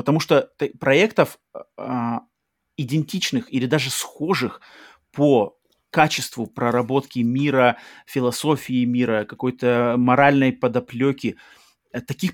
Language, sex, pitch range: Russian, male, 115-140 Hz